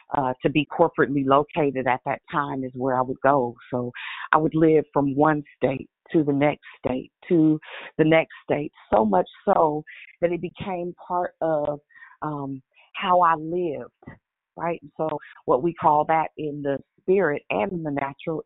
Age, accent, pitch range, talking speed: 40-59, American, 145-175 Hz, 170 wpm